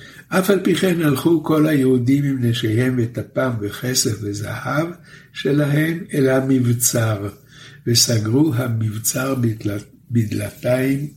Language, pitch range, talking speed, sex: Hebrew, 120-150 Hz, 95 wpm, male